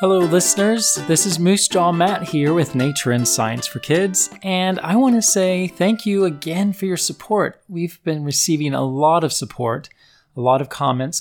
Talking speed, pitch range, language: 185 wpm, 125-170 Hz, English